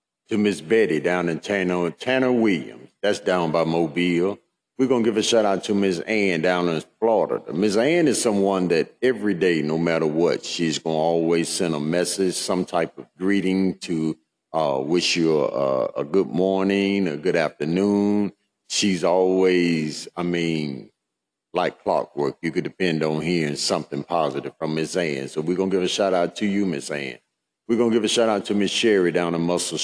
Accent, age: American, 50-69